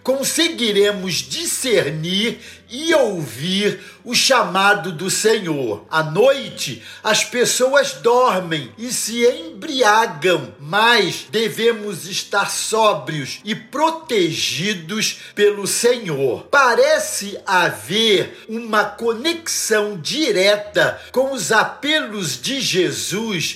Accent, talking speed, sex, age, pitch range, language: Brazilian, 85 wpm, male, 50-69, 185-260 Hz, Portuguese